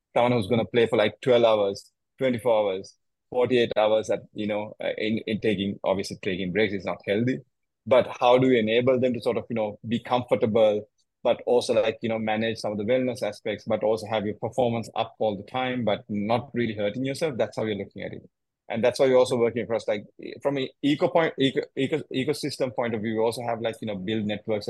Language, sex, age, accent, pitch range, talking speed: English, male, 30-49, Indian, 105-120 Hz, 225 wpm